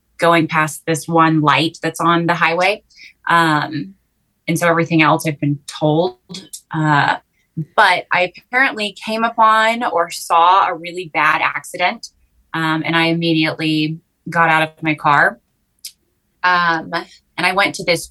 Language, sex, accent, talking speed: English, female, American, 145 wpm